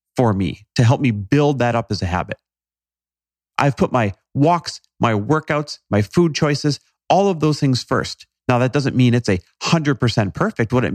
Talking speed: 190 wpm